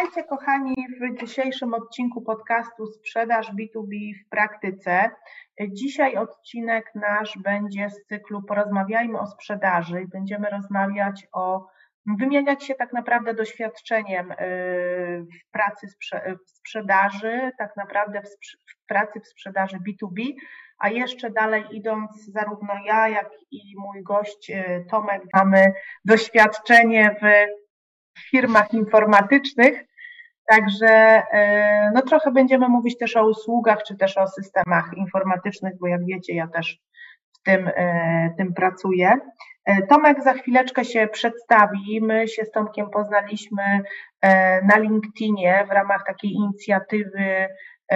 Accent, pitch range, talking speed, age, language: native, 195-220 Hz, 120 wpm, 30-49, Polish